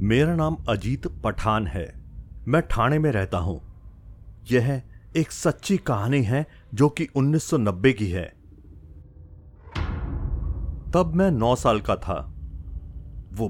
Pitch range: 90-130 Hz